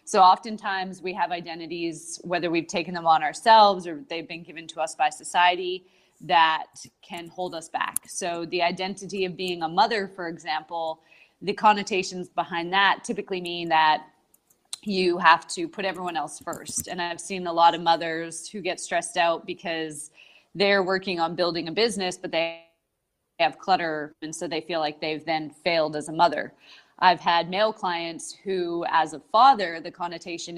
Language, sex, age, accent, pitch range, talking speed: English, female, 20-39, American, 160-185 Hz, 175 wpm